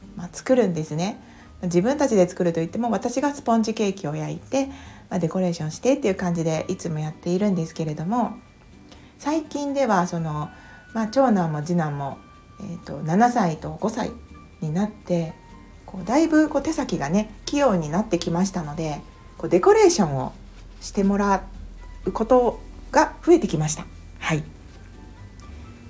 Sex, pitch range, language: female, 165-235 Hz, Japanese